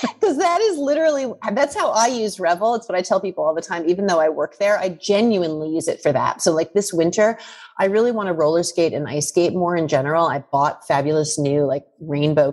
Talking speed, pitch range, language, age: 240 wpm, 155-215 Hz, English, 30-49